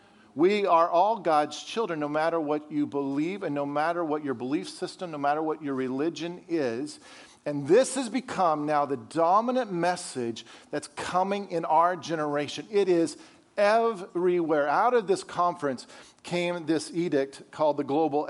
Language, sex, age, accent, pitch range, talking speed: English, male, 50-69, American, 145-185 Hz, 160 wpm